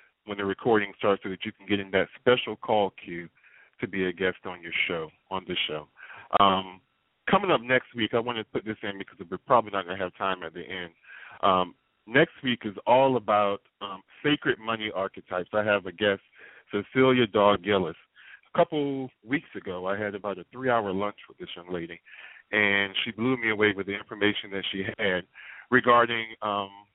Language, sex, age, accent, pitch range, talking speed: English, male, 40-59, American, 100-120 Hz, 205 wpm